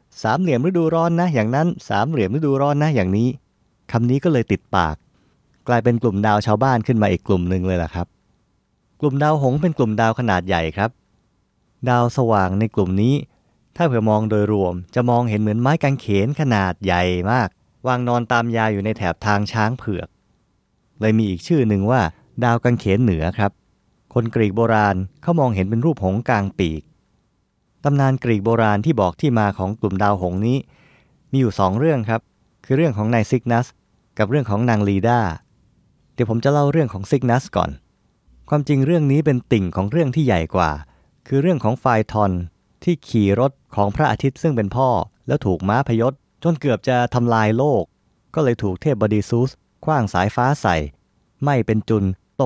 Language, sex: Thai, male